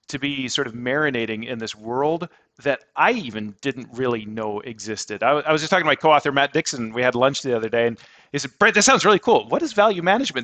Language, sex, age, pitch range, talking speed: English, male, 40-59, 110-150 Hz, 255 wpm